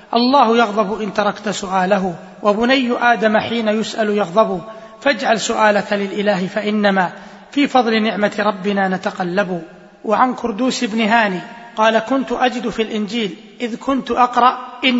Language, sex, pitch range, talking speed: Arabic, male, 205-235 Hz, 125 wpm